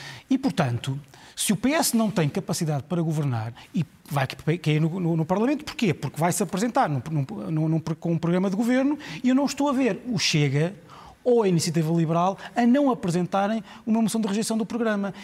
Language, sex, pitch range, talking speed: Portuguese, male, 150-225 Hz, 180 wpm